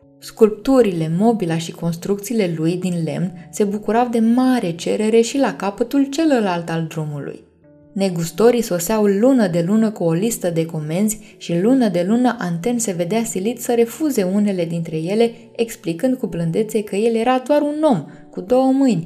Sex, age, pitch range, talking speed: female, 20-39, 180-235 Hz, 165 wpm